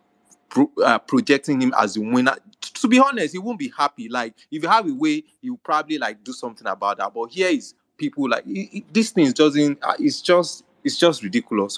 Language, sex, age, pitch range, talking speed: English, male, 20-39, 125-190 Hz, 220 wpm